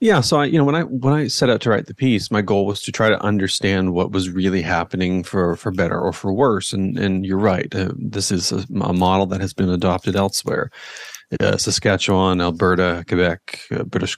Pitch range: 90-105 Hz